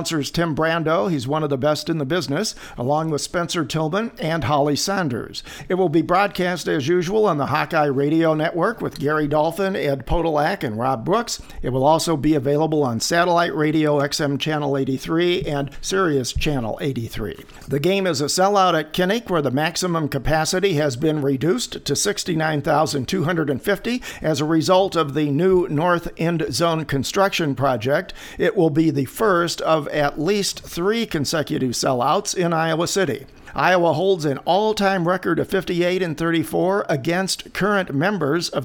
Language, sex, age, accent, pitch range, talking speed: English, male, 50-69, American, 145-180 Hz, 160 wpm